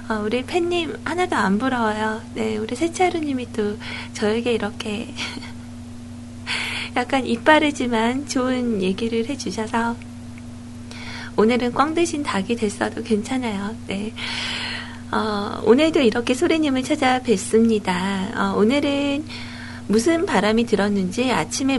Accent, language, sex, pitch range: native, Korean, female, 195-270 Hz